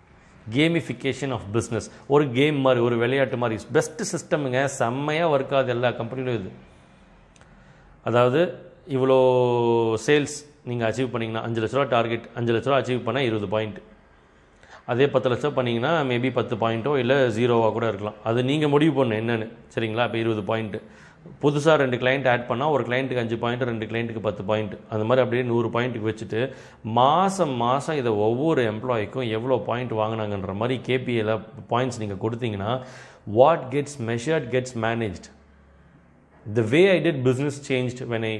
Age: 30-49